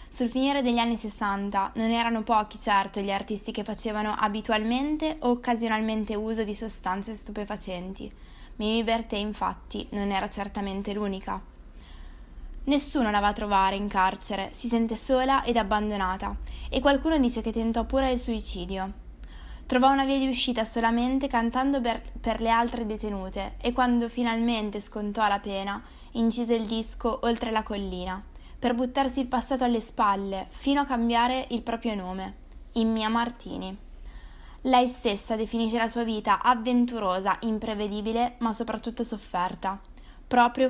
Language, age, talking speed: Italian, 20-39, 145 wpm